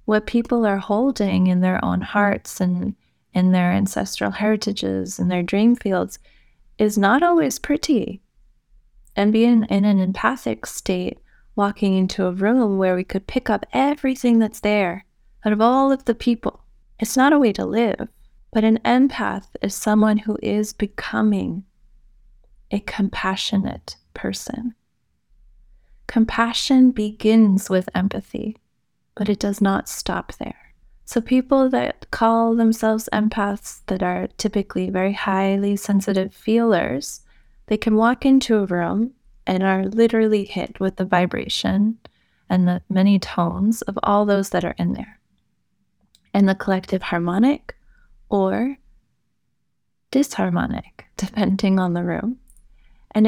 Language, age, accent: English, 20-39, American